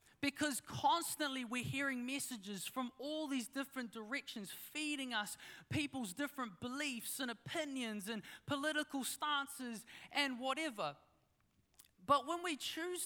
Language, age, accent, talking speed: English, 20-39, Australian, 120 wpm